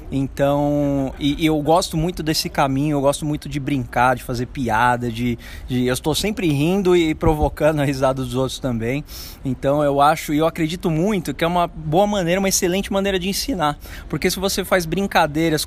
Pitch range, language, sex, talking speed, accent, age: 140-180 Hz, Portuguese, male, 195 wpm, Brazilian, 20-39